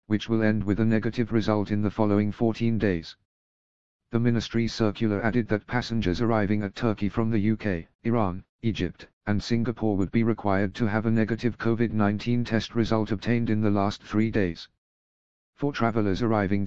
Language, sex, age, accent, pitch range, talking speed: English, male, 50-69, British, 105-115 Hz, 170 wpm